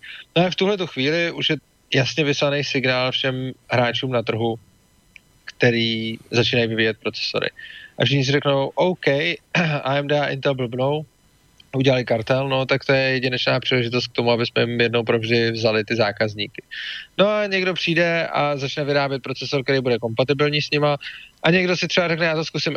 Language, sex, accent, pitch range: English, male, Czech, 125-160 Hz